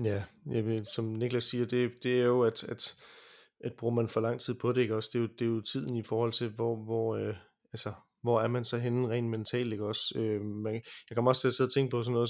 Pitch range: 110-120 Hz